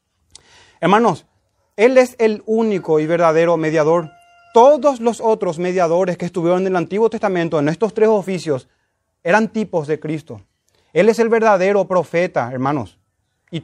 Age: 30-49